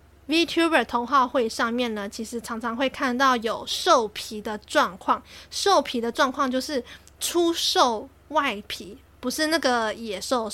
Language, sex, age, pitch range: Chinese, female, 20-39, 235-285 Hz